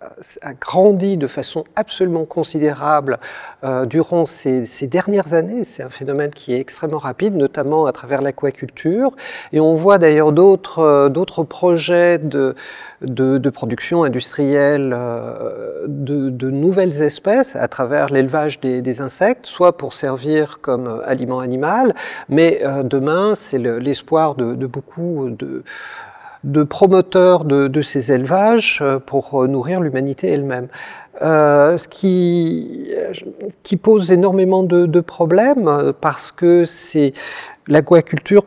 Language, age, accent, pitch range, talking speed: French, 40-59, French, 140-175 Hz, 135 wpm